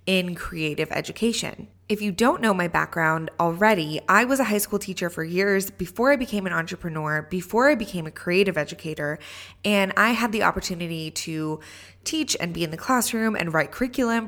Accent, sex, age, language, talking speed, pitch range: American, female, 20-39, English, 185 wpm, 170-230 Hz